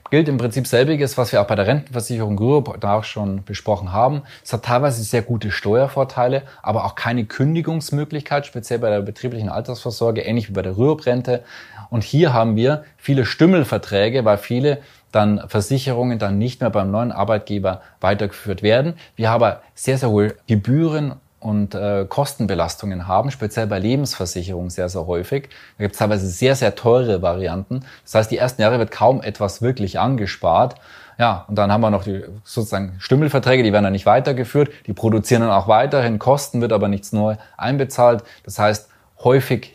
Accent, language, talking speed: German, German, 175 wpm